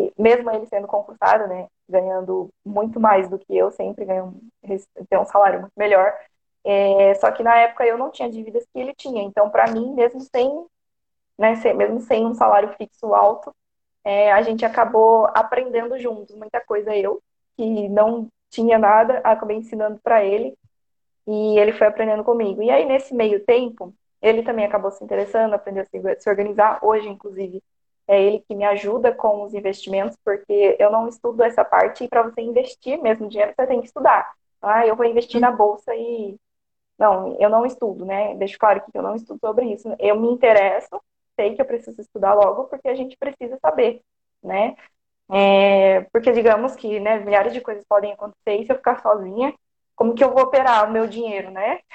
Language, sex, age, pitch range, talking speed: Portuguese, female, 20-39, 205-235 Hz, 190 wpm